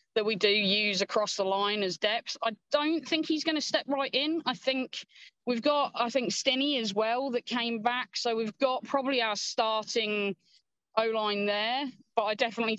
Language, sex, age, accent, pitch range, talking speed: English, female, 20-39, British, 190-230 Hz, 190 wpm